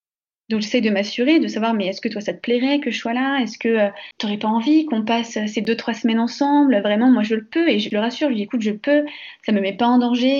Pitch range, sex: 220-265 Hz, female